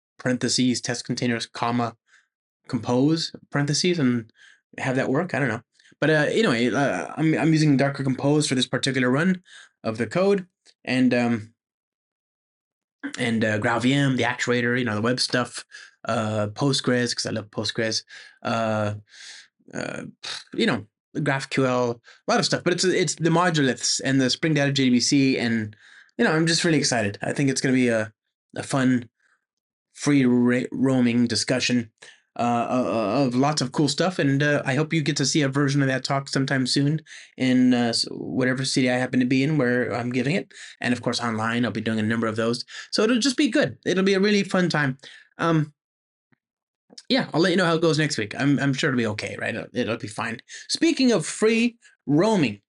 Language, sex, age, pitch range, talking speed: English, male, 20-39, 120-155 Hz, 190 wpm